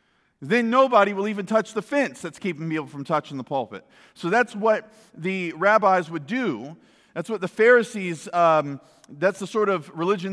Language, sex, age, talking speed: English, male, 40-59, 180 wpm